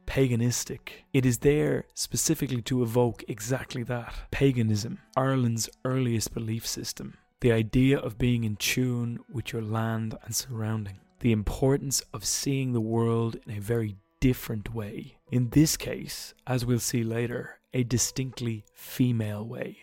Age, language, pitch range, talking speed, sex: 30-49, English, 110-130 Hz, 140 wpm, male